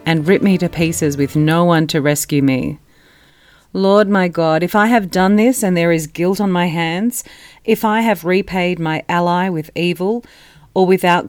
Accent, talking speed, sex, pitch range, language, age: Australian, 190 wpm, female, 155-190 Hz, English, 40-59